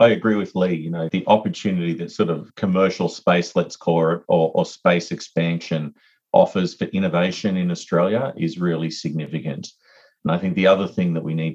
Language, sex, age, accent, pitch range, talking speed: English, male, 40-59, Australian, 80-95 Hz, 190 wpm